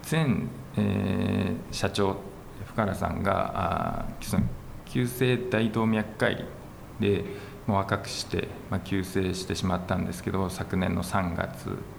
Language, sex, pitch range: Japanese, male, 95-110 Hz